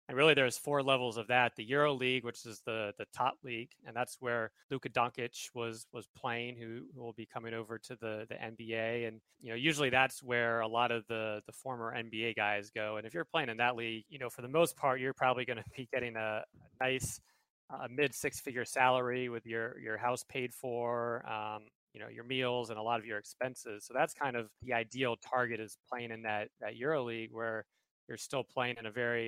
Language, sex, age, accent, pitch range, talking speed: English, male, 20-39, American, 115-125 Hz, 235 wpm